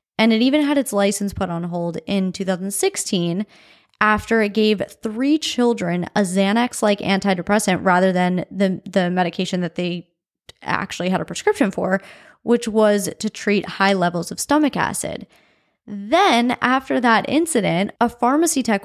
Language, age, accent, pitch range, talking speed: English, 20-39, American, 195-245 Hz, 150 wpm